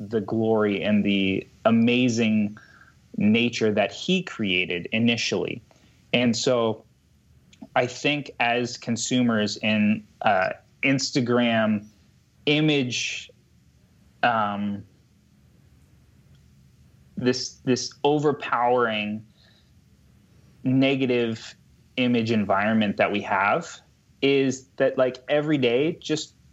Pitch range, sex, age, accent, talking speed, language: 105-125 Hz, male, 20-39, American, 80 wpm, English